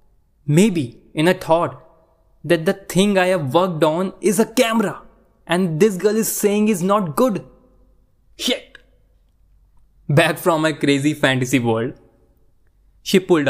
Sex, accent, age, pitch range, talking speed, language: male, native, 20-39, 115-175 Hz, 140 wpm, Hindi